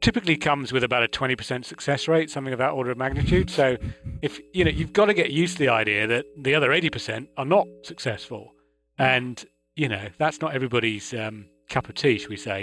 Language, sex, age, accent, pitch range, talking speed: English, male, 30-49, British, 115-155 Hz, 230 wpm